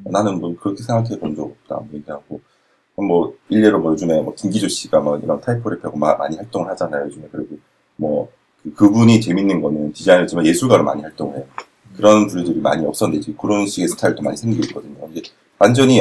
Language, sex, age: Korean, male, 40-59